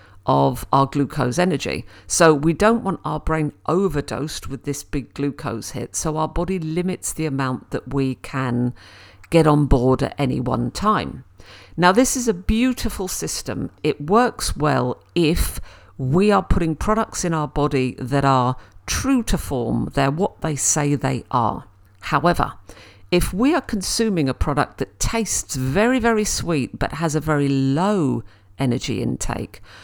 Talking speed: 160 wpm